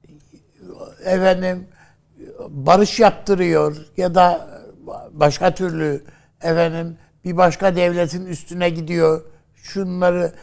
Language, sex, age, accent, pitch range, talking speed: Turkish, male, 60-79, native, 150-195 Hz, 80 wpm